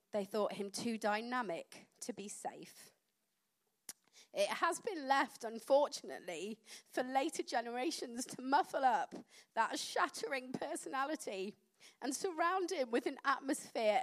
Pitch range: 225-295 Hz